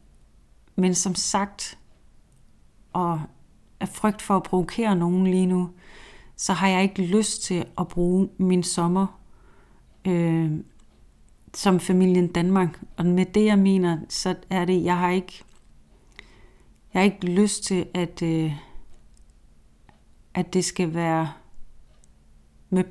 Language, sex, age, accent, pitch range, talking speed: Danish, female, 30-49, native, 165-190 Hz, 130 wpm